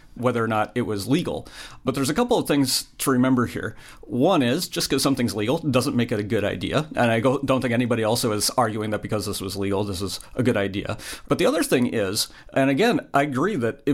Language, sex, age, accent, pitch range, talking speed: English, male, 40-59, American, 115-140 Hz, 240 wpm